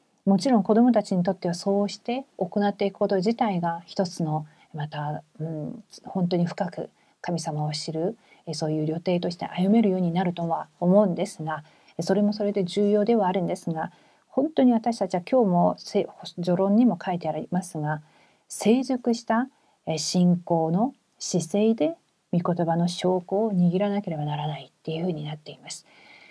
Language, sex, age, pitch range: Korean, female, 40-59, 170-220 Hz